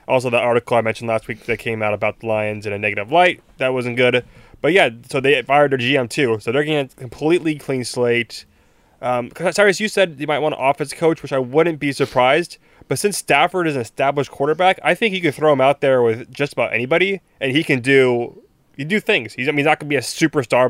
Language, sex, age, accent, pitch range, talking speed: English, male, 20-39, American, 120-155 Hz, 240 wpm